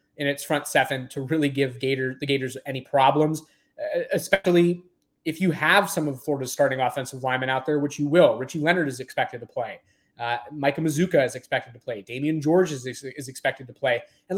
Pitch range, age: 145-175 Hz, 20-39